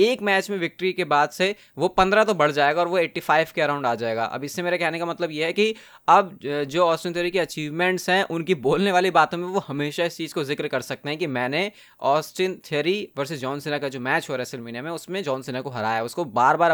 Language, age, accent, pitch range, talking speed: Hindi, 20-39, native, 145-185 Hz, 60 wpm